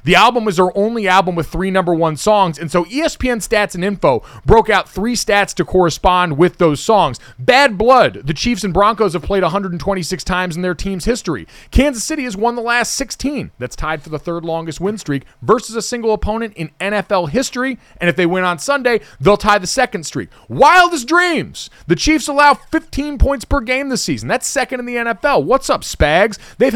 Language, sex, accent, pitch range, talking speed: English, male, American, 175-255 Hz, 210 wpm